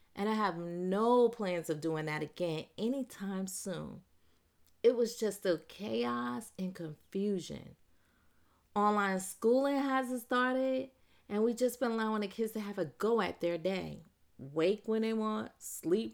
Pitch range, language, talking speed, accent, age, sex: 180-235 Hz, English, 155 wpm, American, 30-49, female